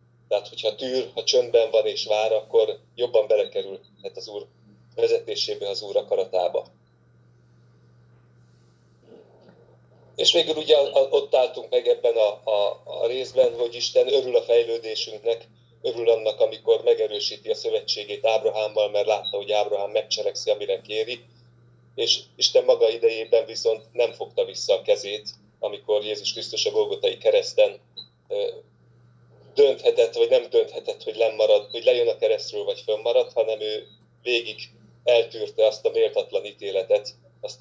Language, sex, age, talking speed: Hungarian, male, 30-49, 135 wpm